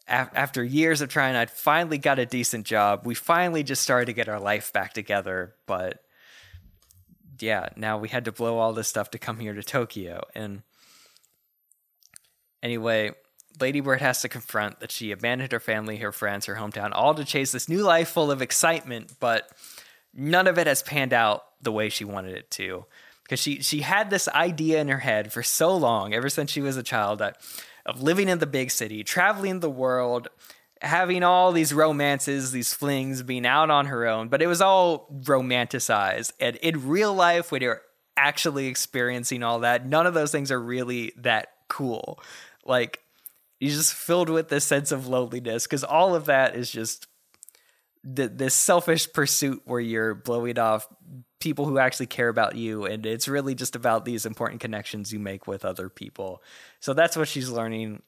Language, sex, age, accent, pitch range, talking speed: English, male, 20-39, American, 110-145 Hz, 185 wpm